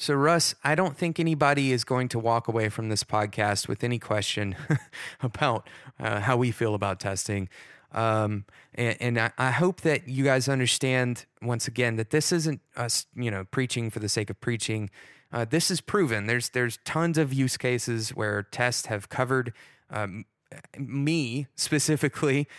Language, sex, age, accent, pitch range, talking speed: English, male, 20-39, American, 110-140 Hz, 175 wpm